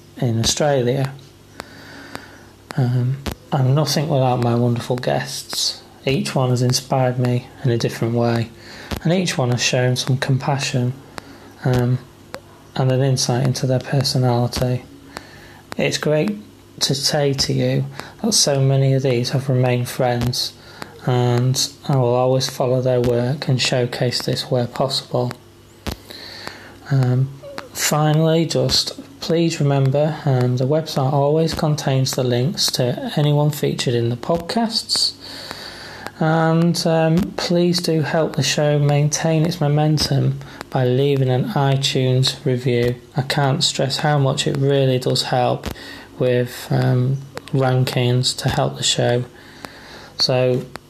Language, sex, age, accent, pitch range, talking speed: English, male, 20-39, British, 125-145 Hz, 125 wpm